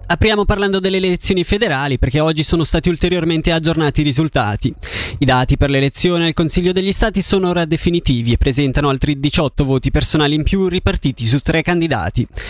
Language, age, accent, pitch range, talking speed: Italian, 20-39, native, 135-175 Hz, 175 wpm